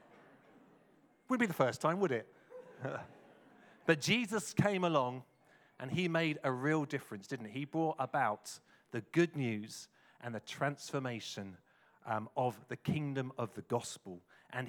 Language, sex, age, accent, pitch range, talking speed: English, male, 40-59, British, 120-160 Hz, 145 wpm